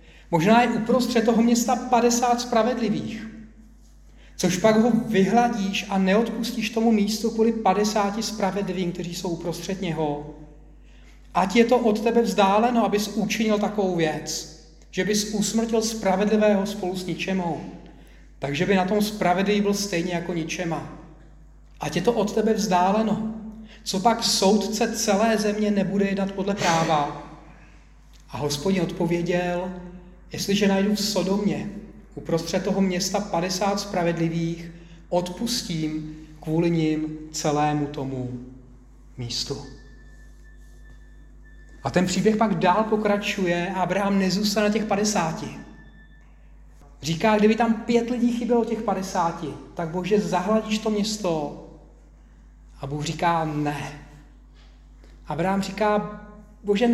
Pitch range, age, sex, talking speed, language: 165-220 Hz, 40-59, male, 120 wpm, Czech